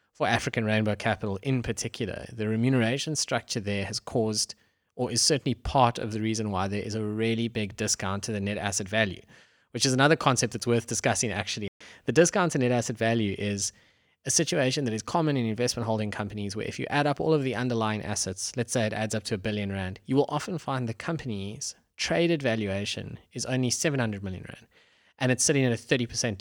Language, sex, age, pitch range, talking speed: English, male, 20-39, 105-125 Hz, 210 wpm